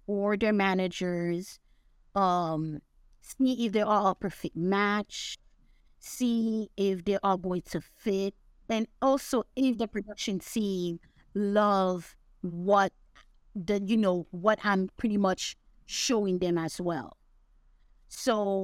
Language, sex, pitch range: English, female, 185-225 Hz